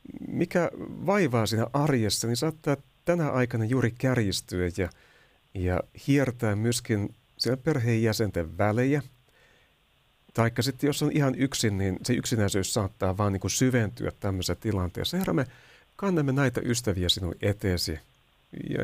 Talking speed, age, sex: 125 wpm, 60-79, male